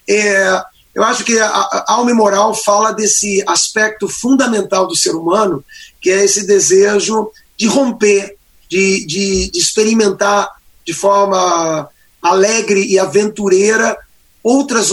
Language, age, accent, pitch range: Portuguese, 30-49, Brazilian, 190-225 Hz